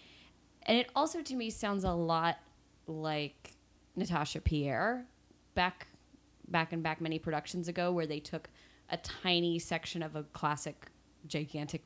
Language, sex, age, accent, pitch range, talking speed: English, female, 20-39, American, 150-225 Hz, 140 wpm